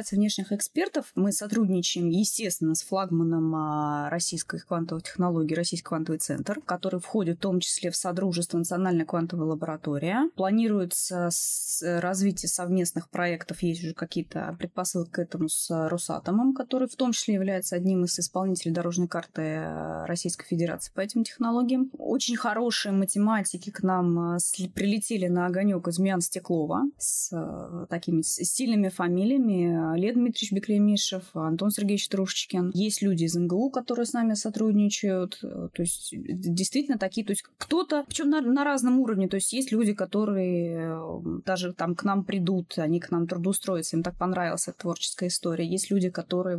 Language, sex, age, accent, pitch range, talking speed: Russian, female, 20-39, native, 170-210 Hz, 145 wpm